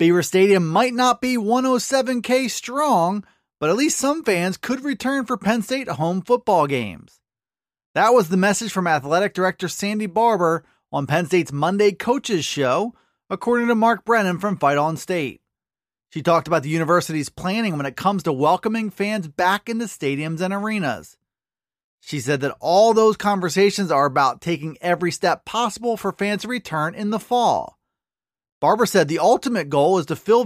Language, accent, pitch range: English, American, 170-230 Hz